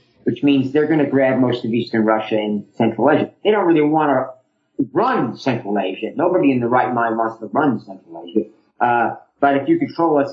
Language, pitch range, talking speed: English, 130-180 Hz, 215 wpm